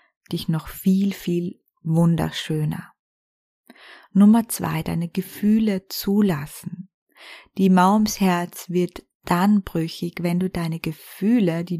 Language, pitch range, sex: German, 170-210 Hz, female